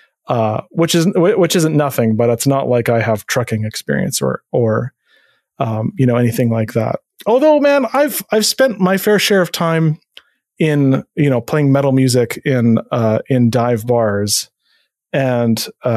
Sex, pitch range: male, 115-165 Hz